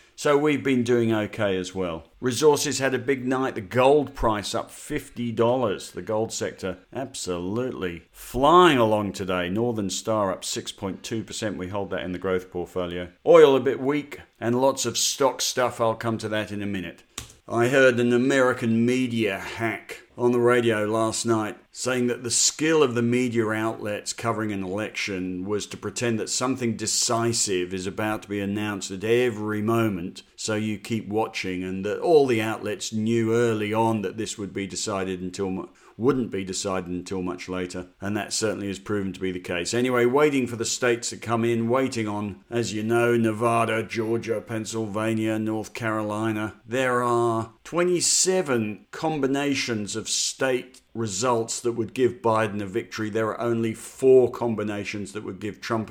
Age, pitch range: 50-69, 105-120 Hz